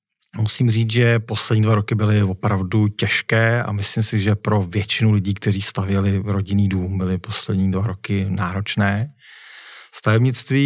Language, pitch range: Czech, 100-115 Hz